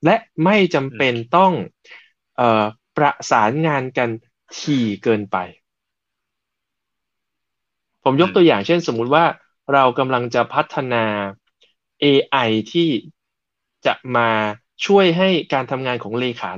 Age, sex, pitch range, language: 20-39, male, 115-160 Hz, Thai